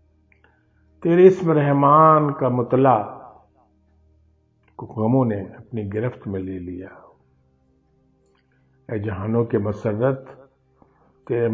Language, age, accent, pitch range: Hindi, 50-69, native, 90-135 Hz